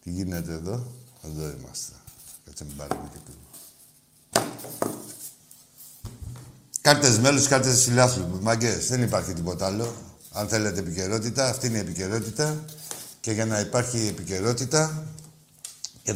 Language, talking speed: Greek, 110 wpm